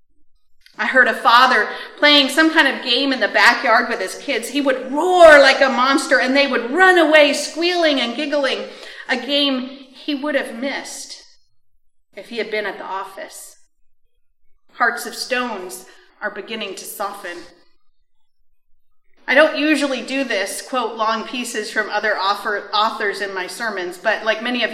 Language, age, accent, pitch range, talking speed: English, 40-59, American, 210-295 Hz, 165 wpm